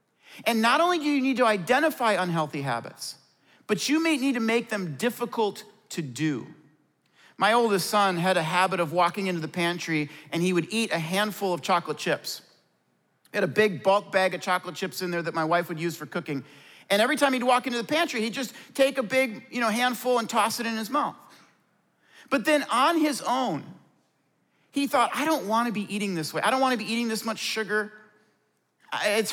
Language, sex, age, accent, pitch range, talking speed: English, male, 40-59, American, 175-245 Hz, 210 wpm